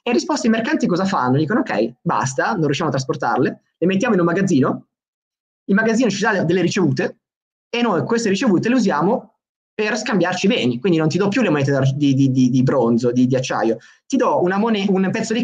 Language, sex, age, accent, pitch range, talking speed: Italian, male, 20-39, native, 140-195 Hz, 220 wpm